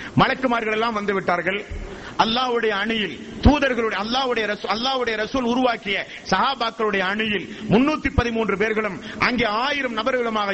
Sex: male